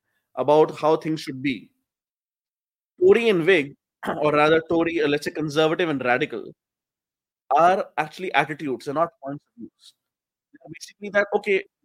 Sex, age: male, 30-49